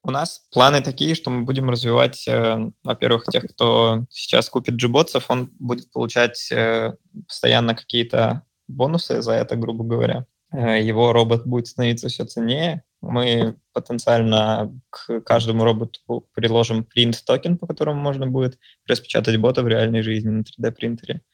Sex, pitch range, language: male, 115-125 Hz, Russian